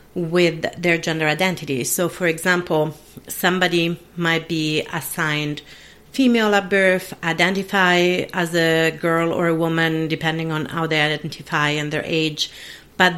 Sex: female